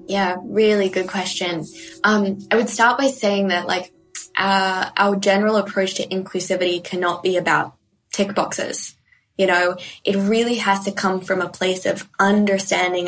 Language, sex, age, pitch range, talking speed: English, female, 20-39, 185-205 Hz, 160 wpm